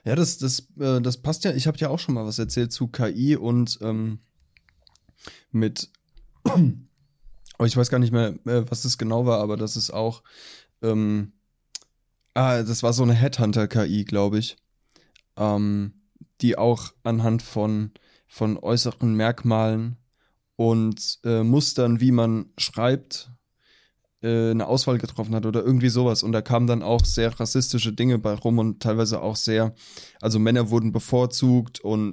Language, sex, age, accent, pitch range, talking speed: German, male, 20-39, German, 110-120 Hz, 155 wpm